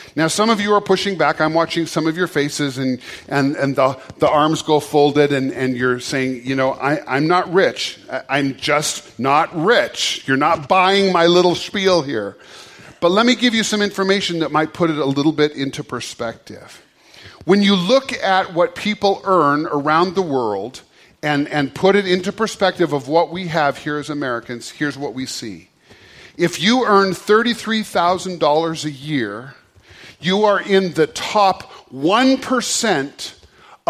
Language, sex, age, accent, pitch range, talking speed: English, male, 40-59, American, 145-200 Hz, 170 wpm